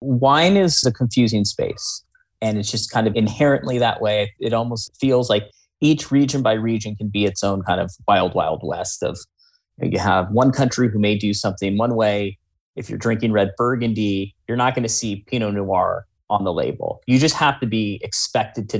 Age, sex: 30-49, male